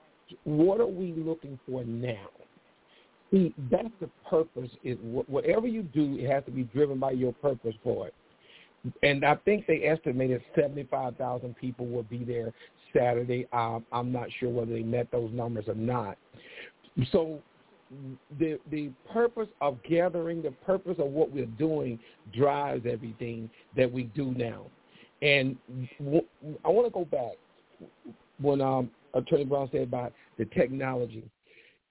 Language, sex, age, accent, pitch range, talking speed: English, male, 50-69, American, 125-160 Hz, 145 wpm